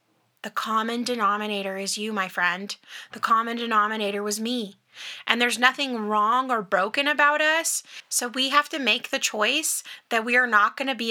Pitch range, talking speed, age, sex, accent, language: 210-255 Hz, 185 wpm, 20-39, female, American, English